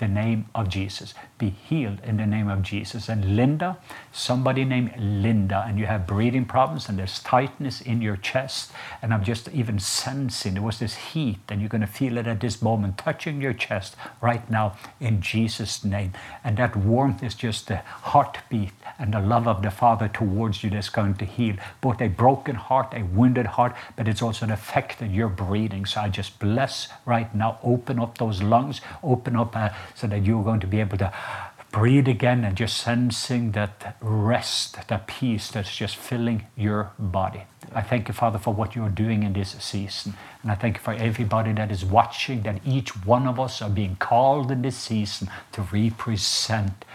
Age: 60-79